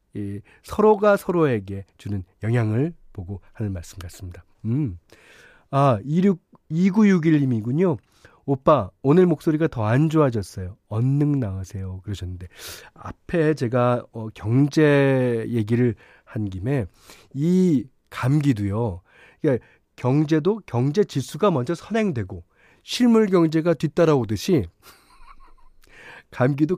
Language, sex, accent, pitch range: Korean, male, native, 110-160 Hz